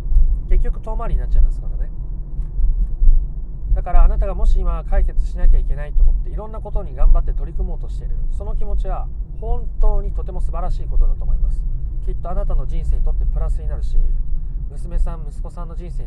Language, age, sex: Japanese, 40-59, male